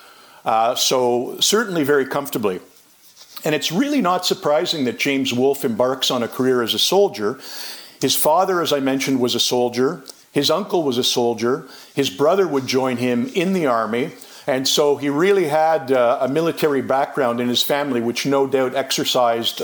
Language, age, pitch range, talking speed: English, 50-69, 130-160 Hz, 175 wpm